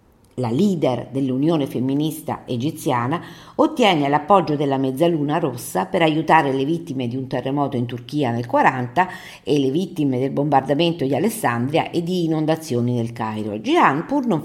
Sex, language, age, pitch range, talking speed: female, Italian, 50-69, 130-180 Hz, 150 wpm